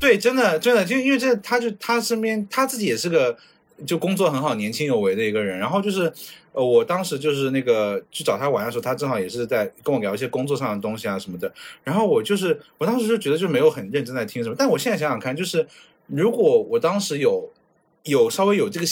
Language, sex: Chinese, male